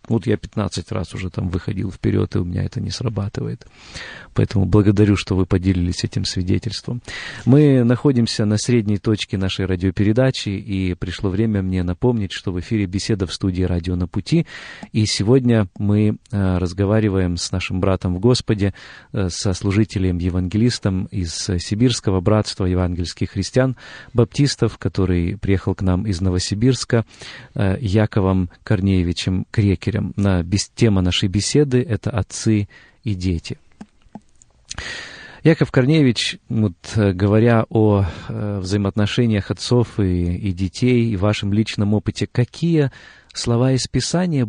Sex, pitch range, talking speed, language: male, 95-120 Hz, 125 wpm, Russian